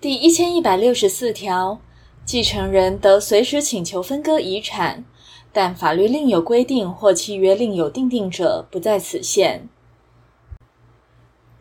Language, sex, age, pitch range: Chinese, female, 20-39, 185-285 Hz